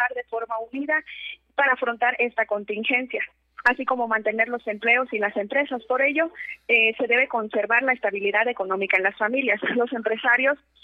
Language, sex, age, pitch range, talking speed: Spanish, female, 20-39, 210-255 Hz, 160 wpm